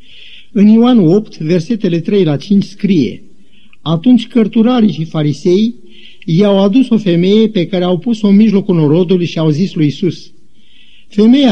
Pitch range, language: 170-220 Hz, Romanian